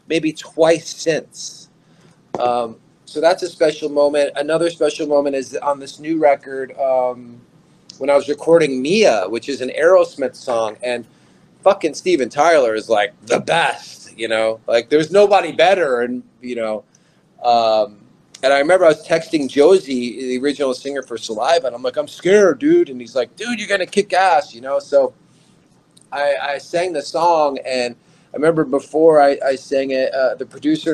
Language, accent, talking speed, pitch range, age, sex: English, American, 175 wpm, 130-175 Hz, 30-49, male